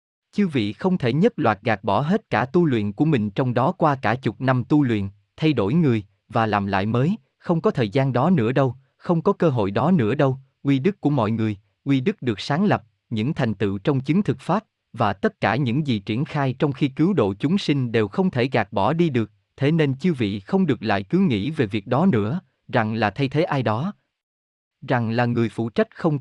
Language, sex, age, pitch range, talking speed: Vietnamese, male, 20-39, 110-160 Hz, 240 wpm